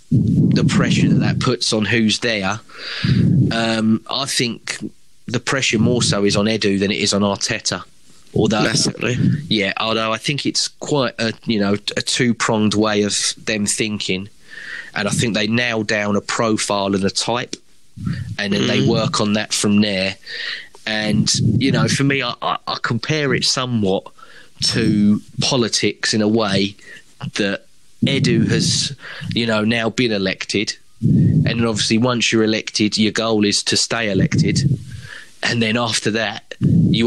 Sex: male